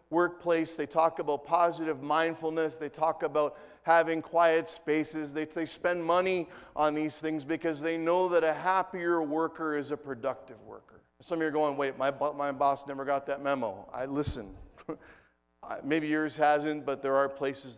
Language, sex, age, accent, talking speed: English, male, 40-59, American, 175 wpm